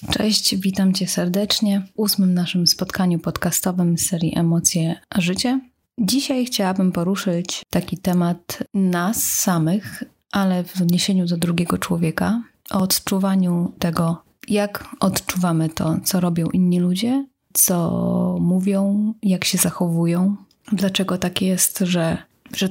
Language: Polish